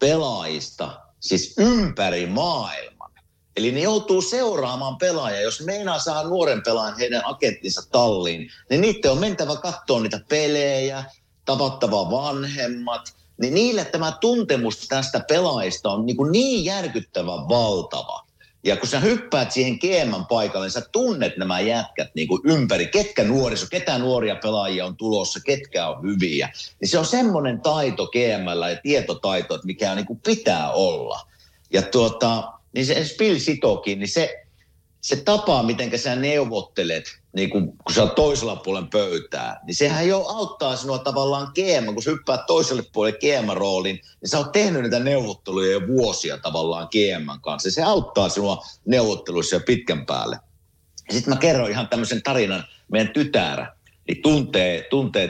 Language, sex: Finnish, male